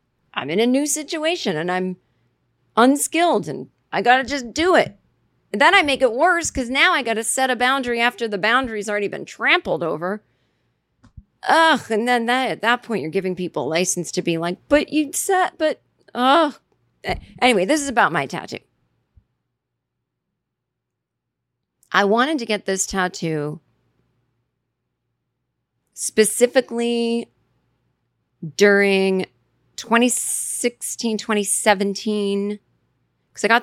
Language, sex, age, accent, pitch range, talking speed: English, female, 40-59, American, 170-240 Hz, 130 wpm